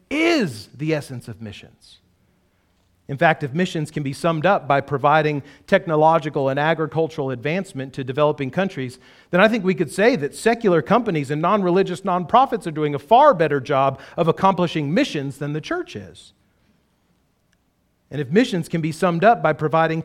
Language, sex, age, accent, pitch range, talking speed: English, male, 40-59, American, 150-220 Hz, 170 wpm